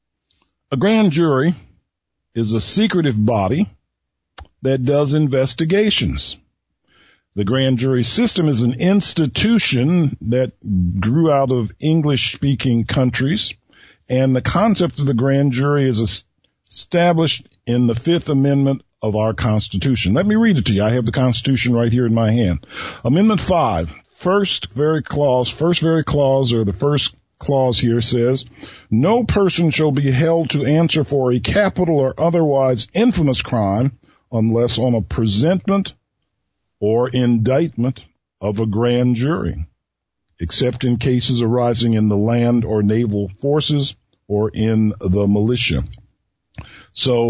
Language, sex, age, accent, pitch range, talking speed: English, male, 50-69, American, 115-150 Hz, 135 wpm